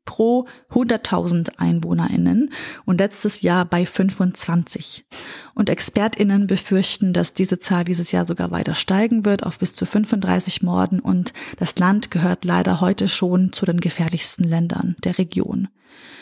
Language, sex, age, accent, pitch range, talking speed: German, female, 30-49, German, 185-230 Hz, 140 wpm